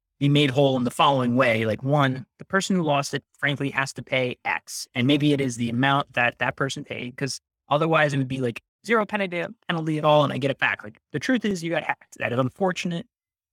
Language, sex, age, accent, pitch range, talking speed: English, male, 20-39, American, 125-165 Hz, 240 wpm